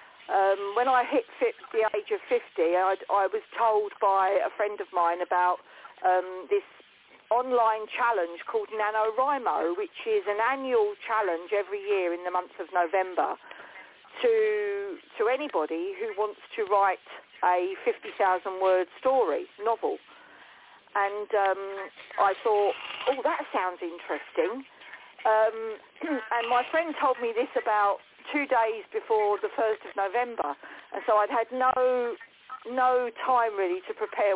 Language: English